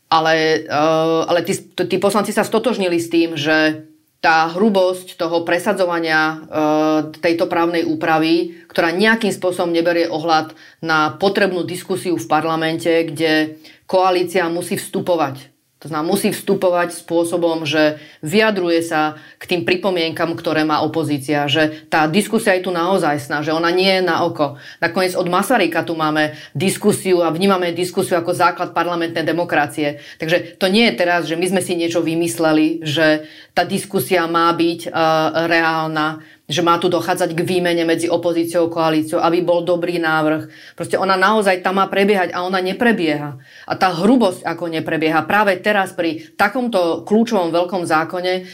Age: 30-49